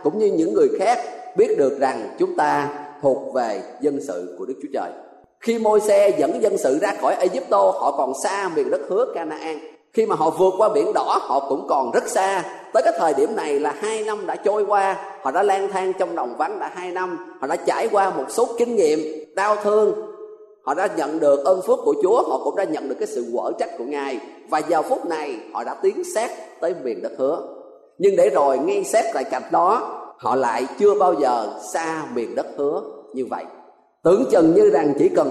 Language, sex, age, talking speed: Vietnamese, male, 20-39, 225 wpm